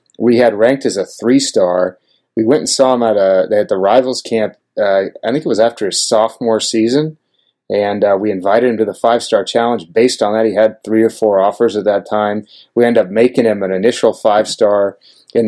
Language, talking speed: English, 215 wpm